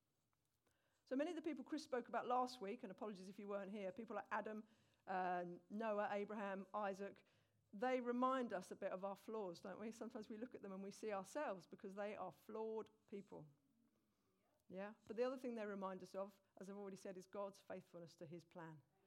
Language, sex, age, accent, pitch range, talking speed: English, female, 50-69, British, 190-245 Hz, 210 wpm